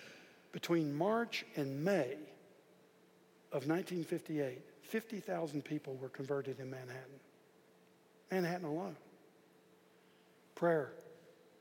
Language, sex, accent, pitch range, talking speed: English, male, American, 145-185 Hz, 80 wpm